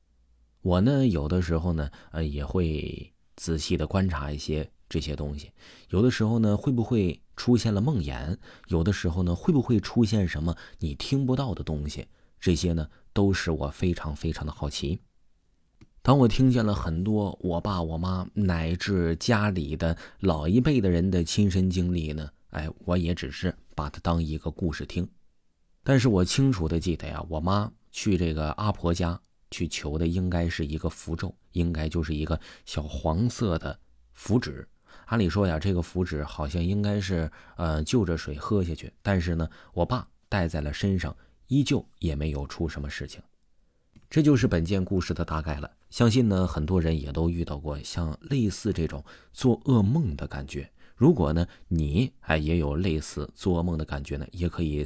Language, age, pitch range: Chinese, 20-39, 80-100 Hz